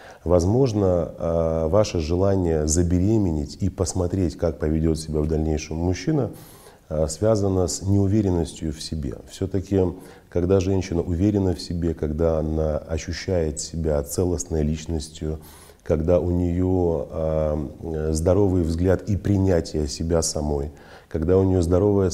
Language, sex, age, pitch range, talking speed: Russian, male, 30-49, 80-95 Hz, 115 wpm